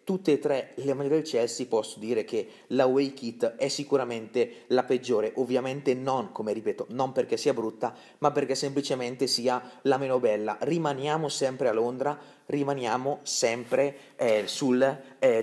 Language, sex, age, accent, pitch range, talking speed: Italian, male, 30-49, native, 125-145 Hz, 160 wpm